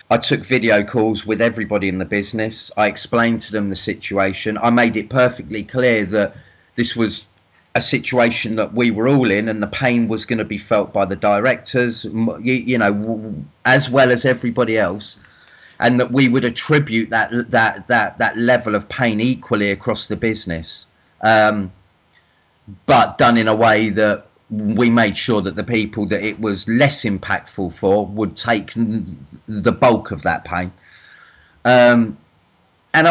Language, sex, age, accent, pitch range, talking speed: English, male, 30-49, British, 105-125 Hz, 165 wpm